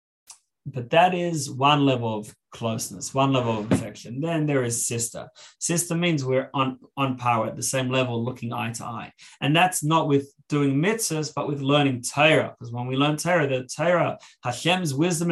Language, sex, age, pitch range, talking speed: English, male, 30-49, 125-155 Hz, 190 wpm